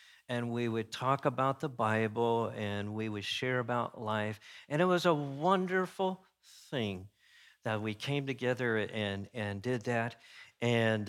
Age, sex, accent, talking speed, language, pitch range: 50-69, male, American, 150 wpm, English, 115-185 Hz